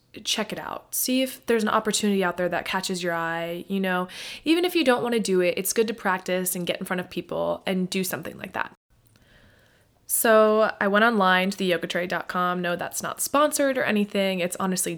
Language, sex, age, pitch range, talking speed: English, female, 20-39, 175-235 Hz, 210 wpm